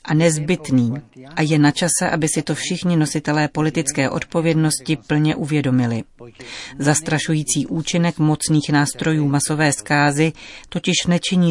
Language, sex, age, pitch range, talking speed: Czech, female, 40-59, 140-165 Hz, 120 wpm